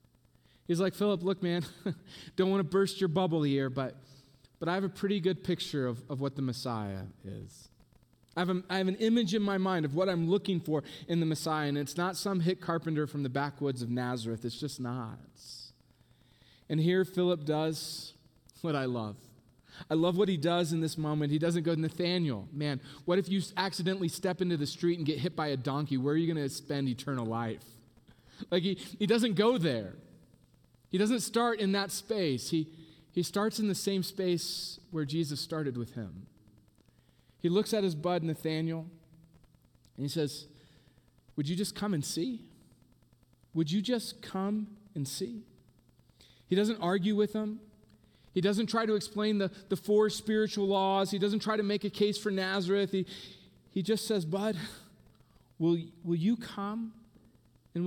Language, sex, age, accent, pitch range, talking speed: English, male, 30-49, American, 145-195 Hz, 185 wpm